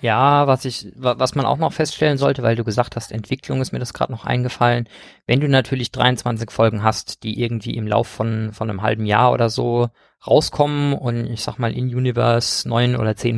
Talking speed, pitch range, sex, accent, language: 210 wpm, 110-135 Hz, male, German, German